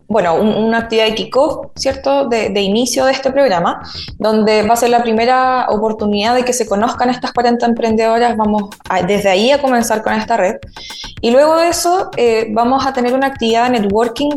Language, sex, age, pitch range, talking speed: Spanish, female, 20-39, 200-245 Hz, 195 wpm